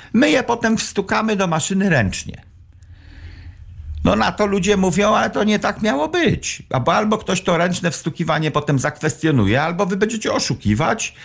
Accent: native